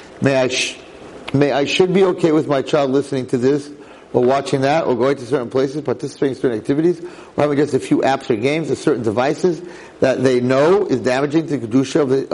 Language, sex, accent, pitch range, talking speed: English, male, American, 125-160 Hz, 230 wpm